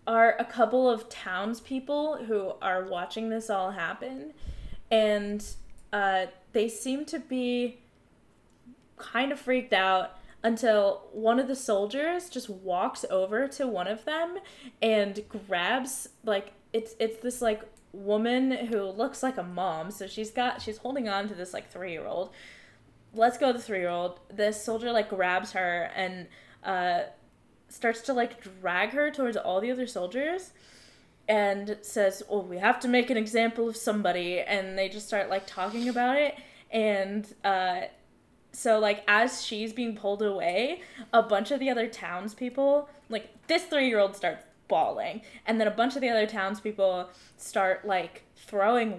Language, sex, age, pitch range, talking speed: English, female, 10-29, 195-250 Hz, 160 wpm